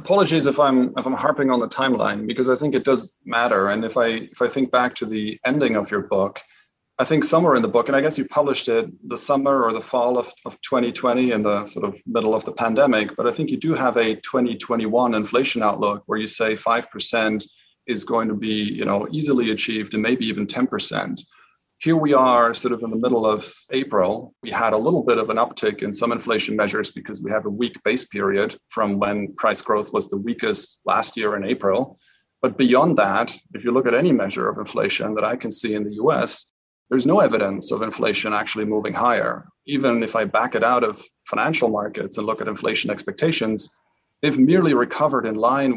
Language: English